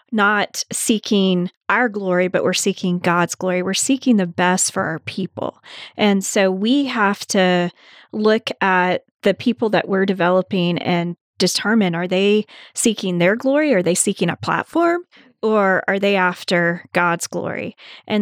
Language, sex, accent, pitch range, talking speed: English, female, American, 185-230 Hz, 160 wpm